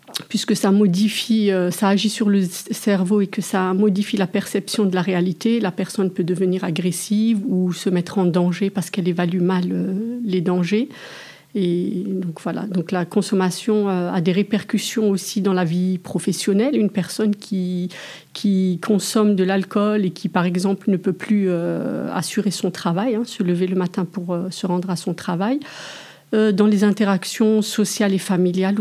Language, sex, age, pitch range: French, female, 50-69, 185-215 Hz